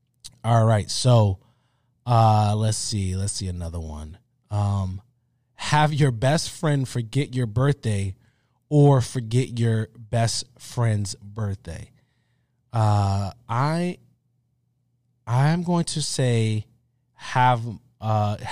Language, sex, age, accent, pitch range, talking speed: English, male, 20-39, American, 110-130 Hz, 105 wpm